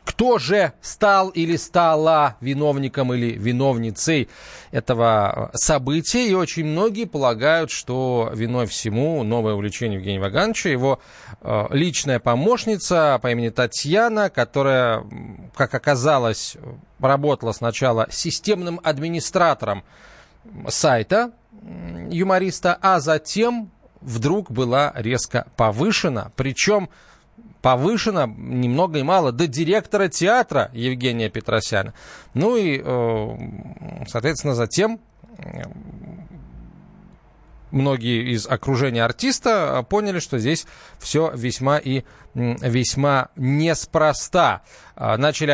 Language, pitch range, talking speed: Russian, 125-185 Hz, 90 wpm